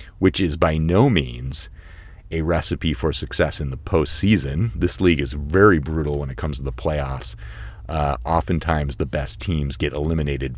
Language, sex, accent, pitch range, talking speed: English, male, American, 70-85 Hz, 170 wpm